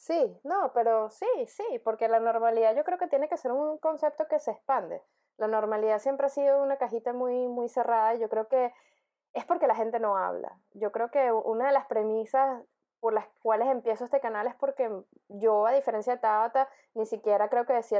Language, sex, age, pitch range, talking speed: Spanish, female, 20-39, 225-270 Hz, 215 wpm